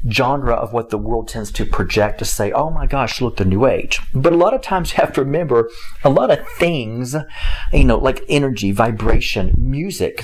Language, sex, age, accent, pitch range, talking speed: English, male, 40-59, American, 115-155 Hz, 210 wpm